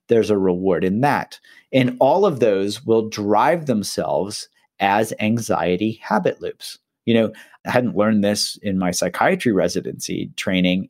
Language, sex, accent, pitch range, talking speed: English, male, American, 105-130 Hz, 150 wpm